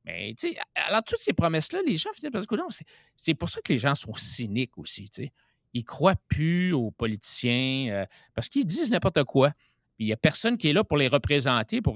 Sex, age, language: male, 60-79, French